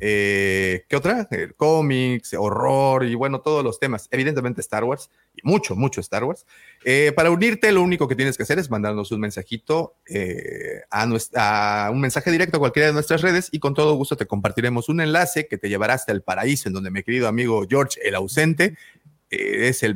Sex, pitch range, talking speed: male, 105-150 Hz, 205 wpm